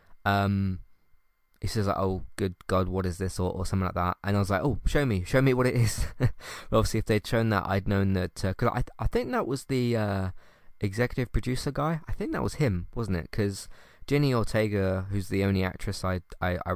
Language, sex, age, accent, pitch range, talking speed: English, male, 20-39, British, 90-110 Hz, 235 wpm